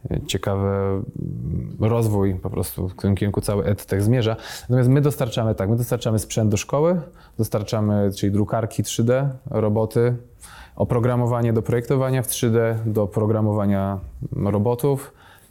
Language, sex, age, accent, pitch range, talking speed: Polish, male, 20-39, native, 100-115 Hz, 125 wpm